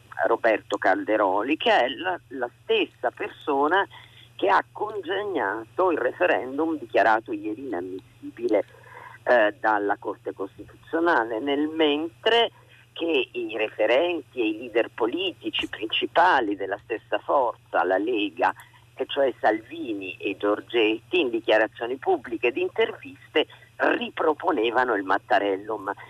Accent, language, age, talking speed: native, Italian, 50-69, 110 wpm